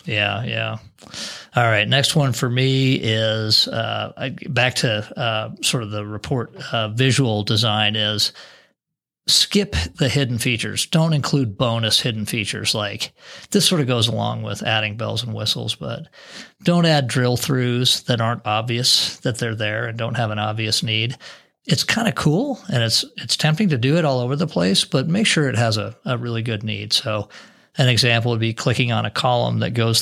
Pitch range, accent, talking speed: 110-135 Hz, American, 190 wpm